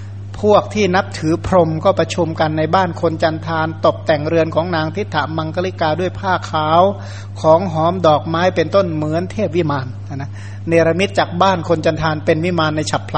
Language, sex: Thai, male